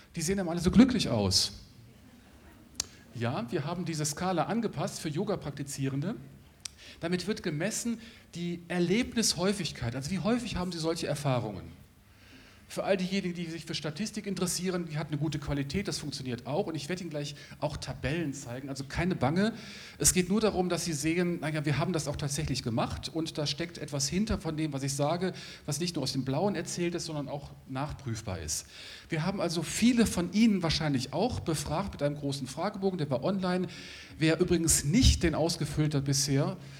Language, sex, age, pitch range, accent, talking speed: German, male, 40-59, 140-180 Hz, German, 185 wpm